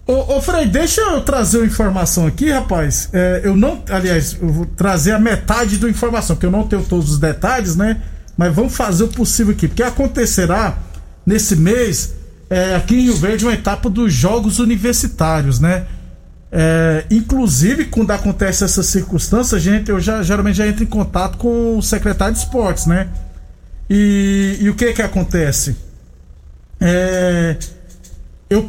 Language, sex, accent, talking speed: Portuguese, male, Brazilian, 165 wpm